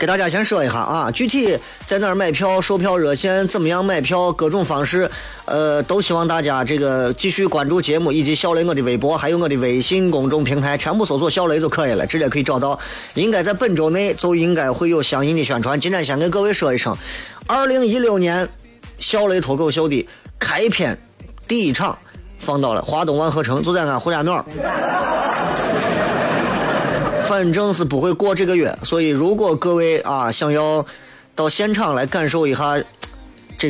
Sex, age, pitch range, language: male, 30-49, 145-195 Hz, Chinese